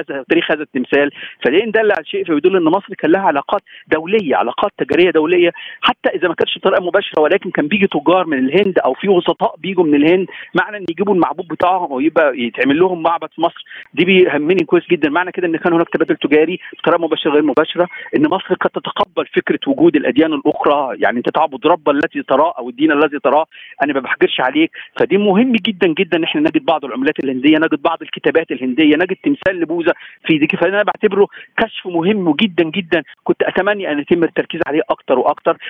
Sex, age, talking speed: male, 50-69, 190 wpm